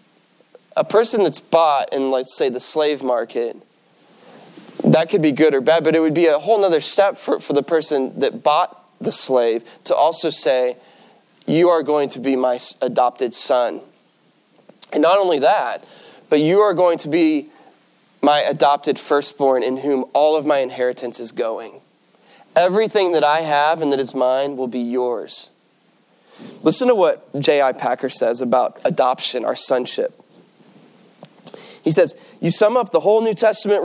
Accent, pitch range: American, 140-200 Hz